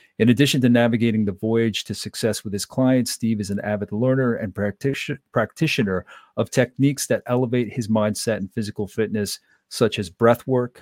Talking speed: 165 wpm